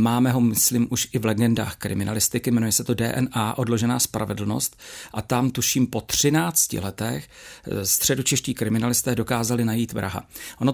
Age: 40-59